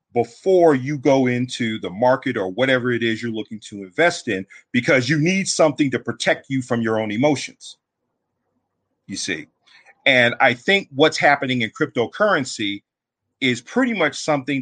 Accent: American